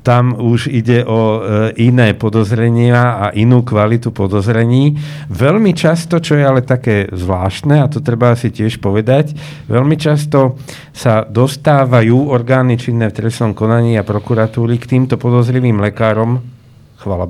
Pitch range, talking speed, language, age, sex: 105-125 Hz, 140 wpm, Slovak, 50-69, male